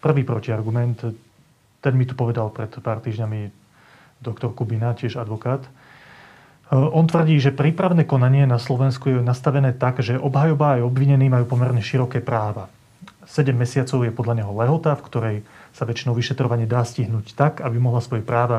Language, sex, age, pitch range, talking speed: Slovak, male, 30-49, 120-140 Hz, 160 wpm